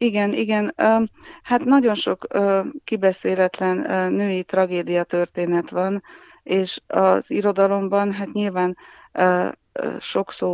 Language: Hungarian